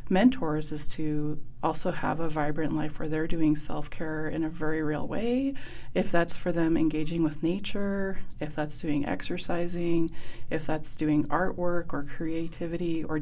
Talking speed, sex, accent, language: 160 wpm, female, American, English